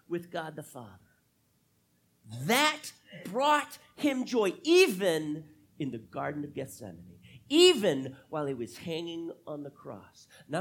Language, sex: English, male